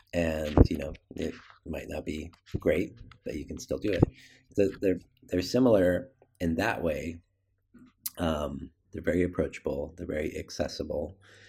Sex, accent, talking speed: male, American, 140 wpm